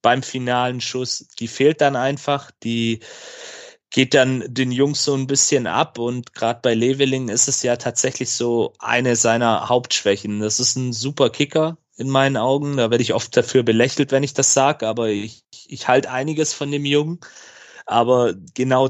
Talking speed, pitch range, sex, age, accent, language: 180 wpm, 120-140 Hz, male, 30-49, German, German